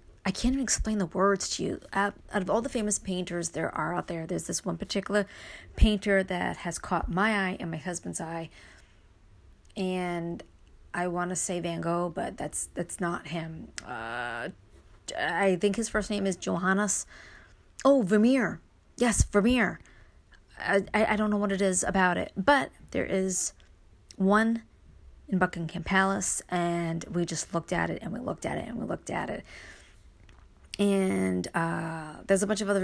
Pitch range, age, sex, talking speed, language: 170-215 Hz, 30-49, female, 175 wpm, English